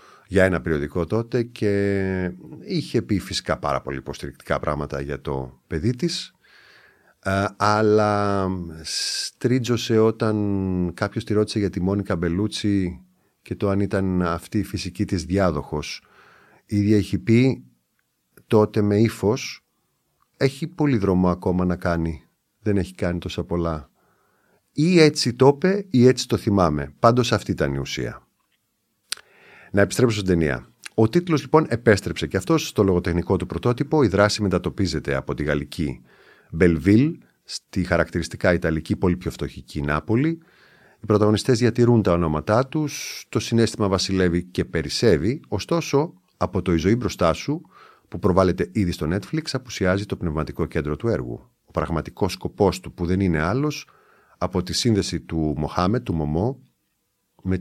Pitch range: 85-115 Hz